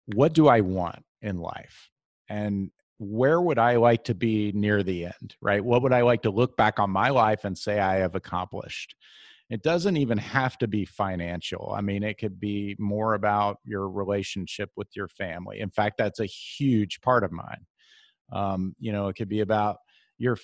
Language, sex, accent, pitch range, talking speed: English, male, American, 105-130 Hz, 195 wpm